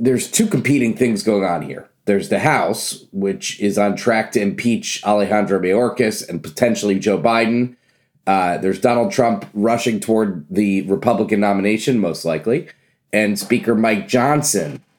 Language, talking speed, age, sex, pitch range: English, 150 wpm, 30-49, male, 100-125 Hz